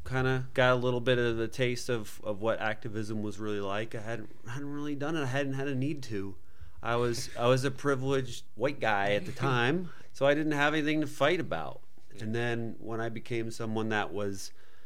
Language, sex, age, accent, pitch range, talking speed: English, male, 30-49, American, 100-125 Hz, 225 wpm